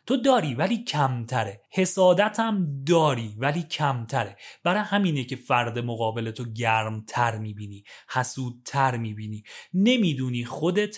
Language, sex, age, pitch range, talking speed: Persian, male, 30-49, 120-180 Hz, 110 wpm